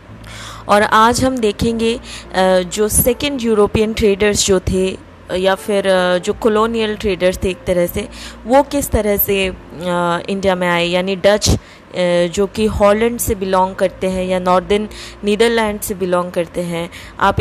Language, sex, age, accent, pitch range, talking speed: Hindi, female, 20-39, native, 185-230 Hz, 150 wpm